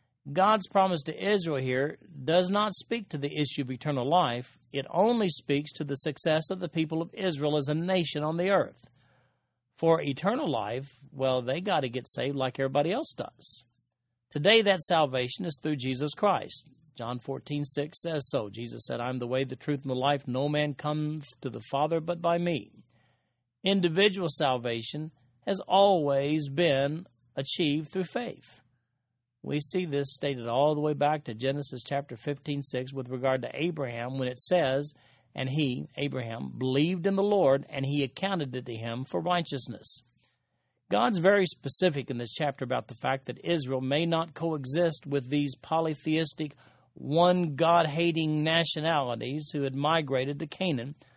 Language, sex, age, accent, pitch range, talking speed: English, male, 40-59, American, 130-165 Hz, 165 wpm